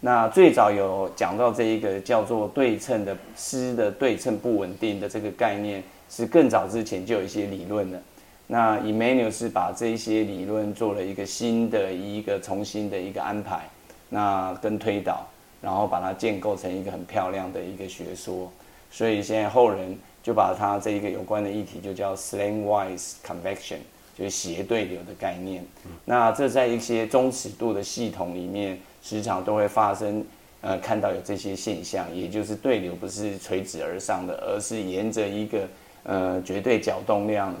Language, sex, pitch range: Chinese, male, 95-110 Hz